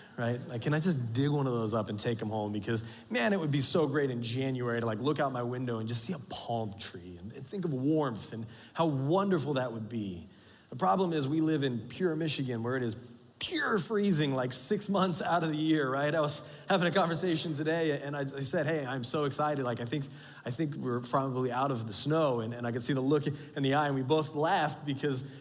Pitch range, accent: 125-160 Hz, American